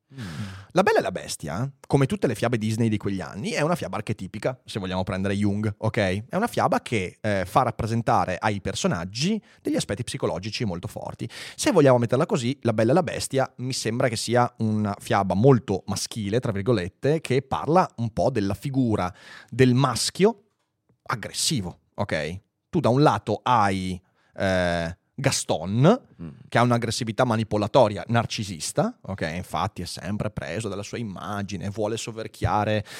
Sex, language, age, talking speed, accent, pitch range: male, Italian, 30-49, 160 wpm, native, 105-125 Hz